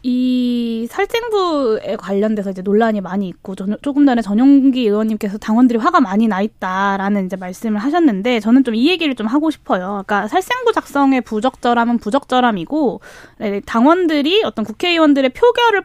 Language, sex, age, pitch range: Korean, female, 20-39, 215-310 Hz